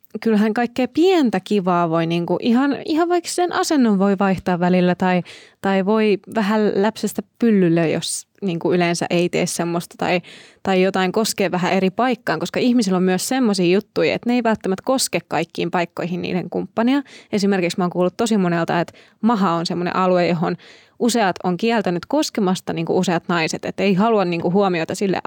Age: 20-39